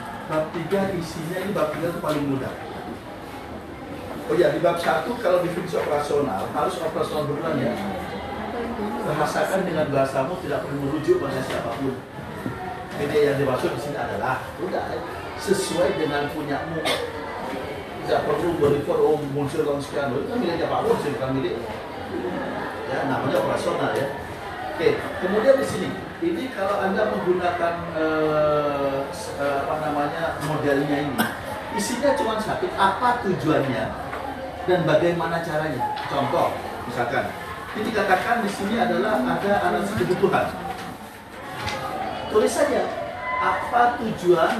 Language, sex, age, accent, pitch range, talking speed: Indonesian, male, 40-59, native, 145-190 Hz, 130 wpm